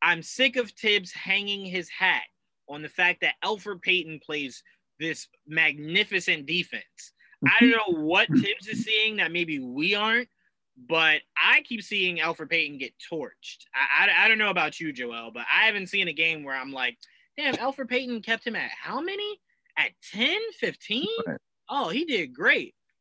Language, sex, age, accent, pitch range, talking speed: English, male, 20-39, American, 150-225 Hz, 175 wpm